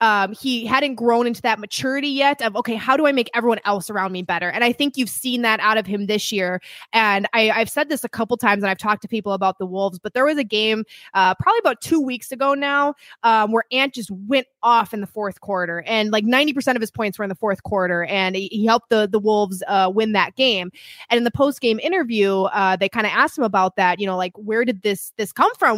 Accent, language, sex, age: American, English, female, 20-39